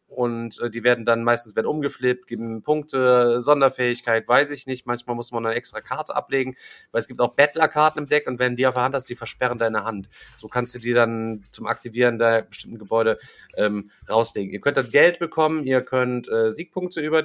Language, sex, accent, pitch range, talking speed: German, male, German, 115-130 Hz, 210 wpm